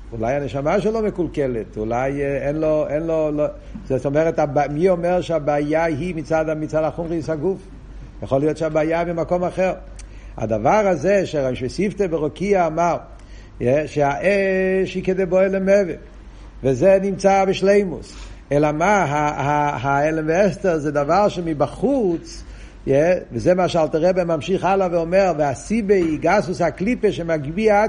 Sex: male